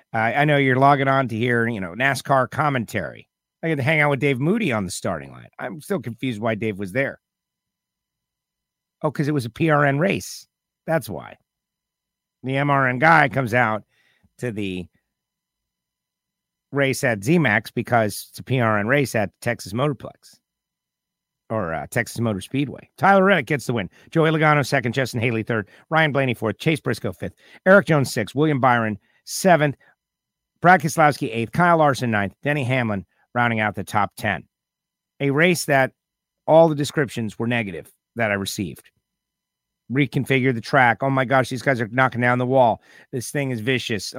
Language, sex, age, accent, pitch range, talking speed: English, male, 50-69, American, 115-145 Hz, 175 wpm